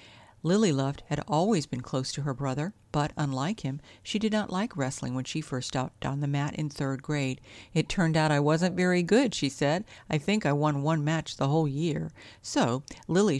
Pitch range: 135-165 Hz